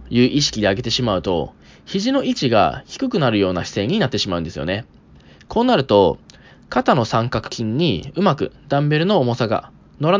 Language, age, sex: Japanese, 20-39, male